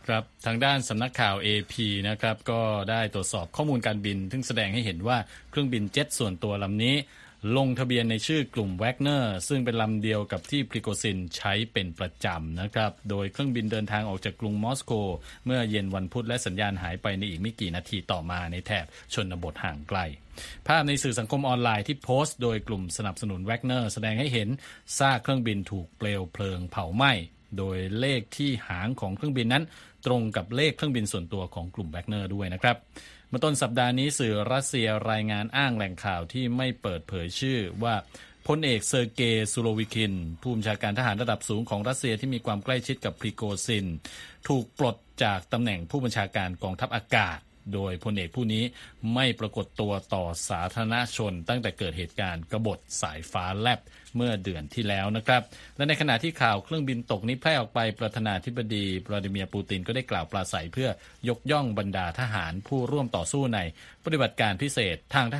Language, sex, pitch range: Thai, male, 100-125 Hz